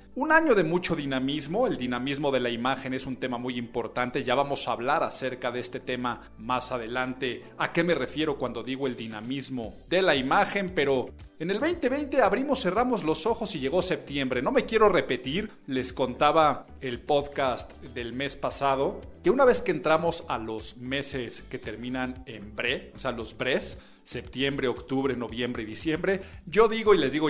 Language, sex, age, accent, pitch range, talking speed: Spanish, male, 40-59, Mexican, 130-185 Hz, 185 wpm